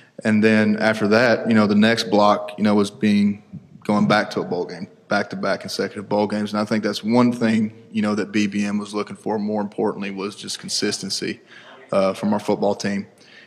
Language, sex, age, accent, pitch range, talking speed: English, male, 20-39, American, 100-110 Hz, 205 wpm